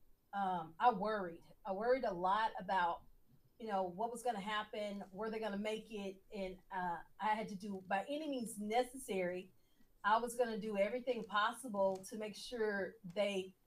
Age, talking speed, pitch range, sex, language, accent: 40-59, 185 wpm, 200-250 Hz, female, English, American